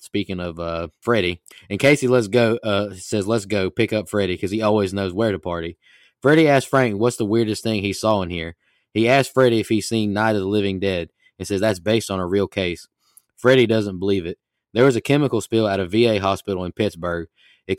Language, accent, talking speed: English, American, 230 wpm